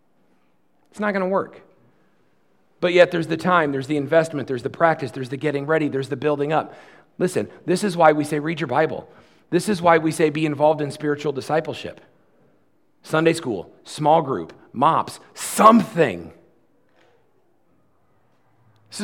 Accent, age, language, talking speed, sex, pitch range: American, 40-59, English, 160 wpm, male, 135-195 Hz